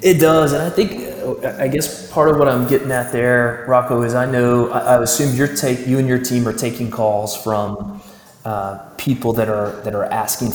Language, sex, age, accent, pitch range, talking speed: English, male, 30-49, American, 105-120 Hz, 210 wpm